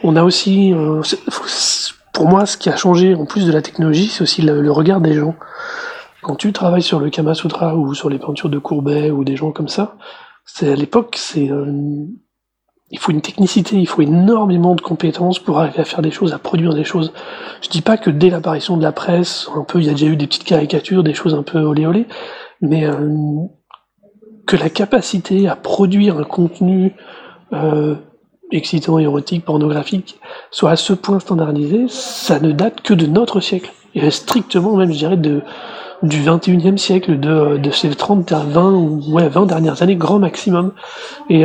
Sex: male